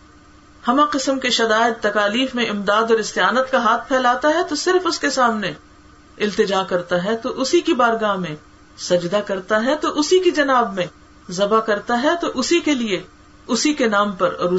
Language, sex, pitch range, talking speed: Urdu, female, 150-235 Hz, 190 wpm